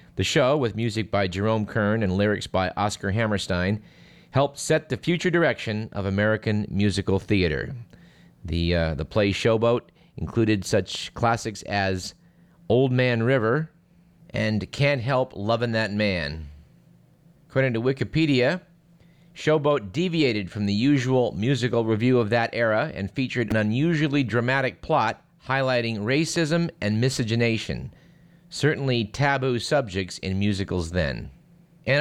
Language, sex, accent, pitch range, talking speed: English, male, American, 105-145 Hz, 125 wpm